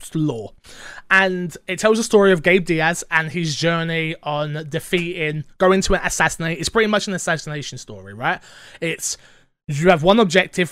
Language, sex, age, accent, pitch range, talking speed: English, male, 20-39, British, 150-190 Hz, 170 wpm